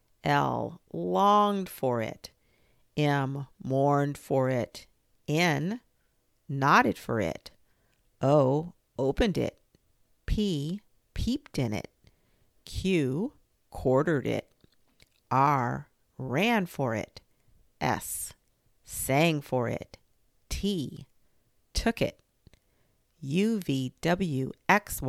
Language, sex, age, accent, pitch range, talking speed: English, female, 50-69, American, 130-190 Hz, 90 wpm